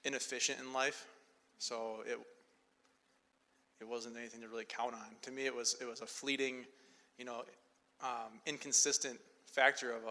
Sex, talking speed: male, 155 wpm